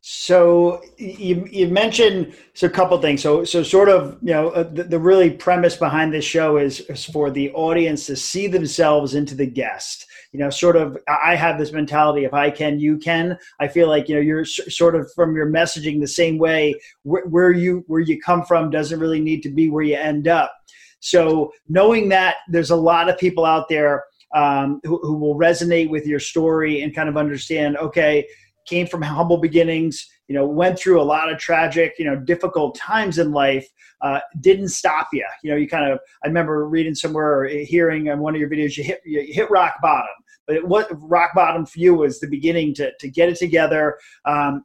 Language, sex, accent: English, male, American